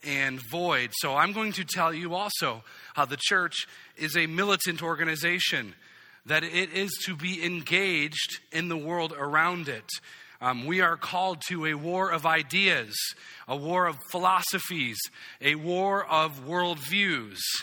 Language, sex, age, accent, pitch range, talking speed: English, male, 40-59, American, 140-185 Hz, 150 wpm